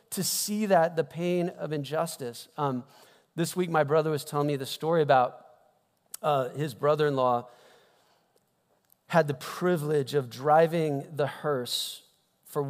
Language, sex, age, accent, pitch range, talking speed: English, male, 40-59, American, 110-145 Hz, 135 wpm